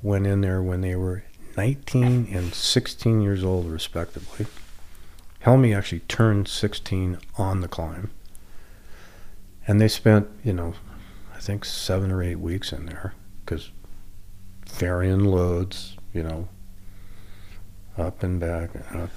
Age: 50-69